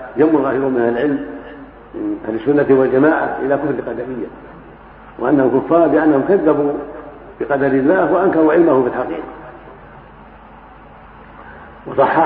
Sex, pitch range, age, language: male, 125-155 Hz, 60-79, Arabic